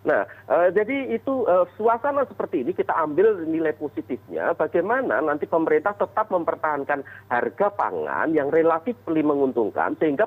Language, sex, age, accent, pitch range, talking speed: Indonesian, male, 40-59, native, 140-210 Hz, 140 wpm